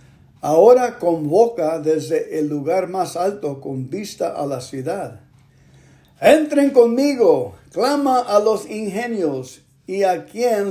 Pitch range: 140-190 Hz